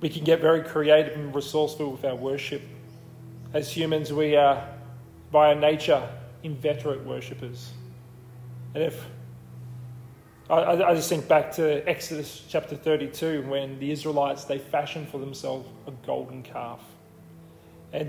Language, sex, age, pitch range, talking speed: English, male, 30-49, 135-160 Hz, 130 wpm